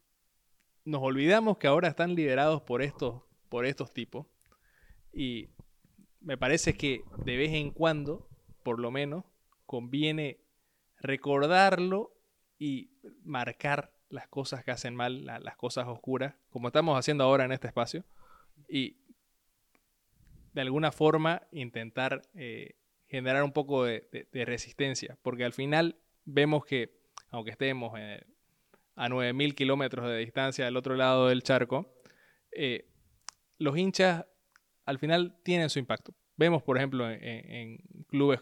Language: Spanish